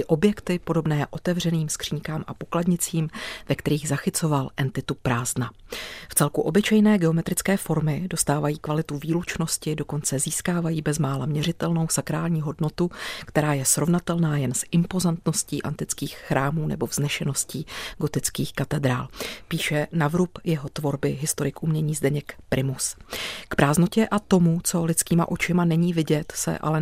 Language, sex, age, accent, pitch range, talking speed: Czech, female, 40-59, native, 150-175 Hz, 125 wpm